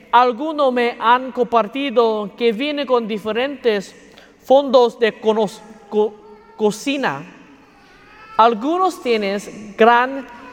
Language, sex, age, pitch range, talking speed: English, male, 40-59, 215-265 Hz, 90 wpm